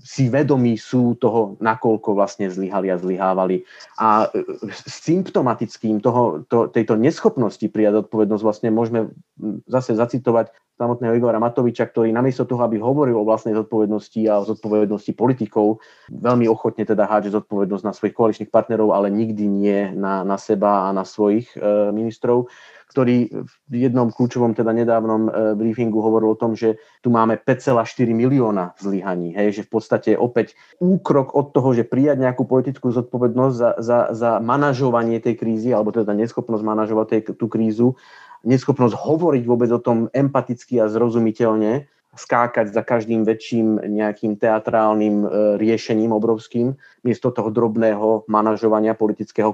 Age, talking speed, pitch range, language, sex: 30-49, 145 wpm, 105-120 Hz, Slovak, male